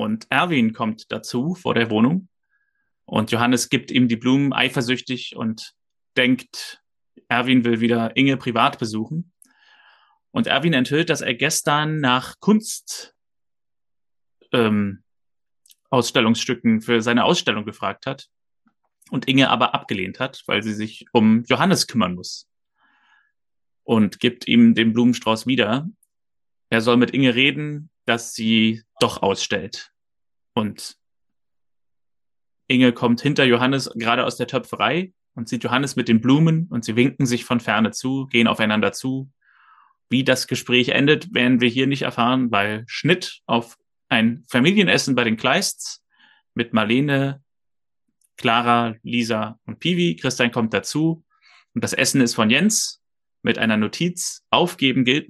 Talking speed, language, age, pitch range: 135 wpm, German, 30-49, 115-140 Hz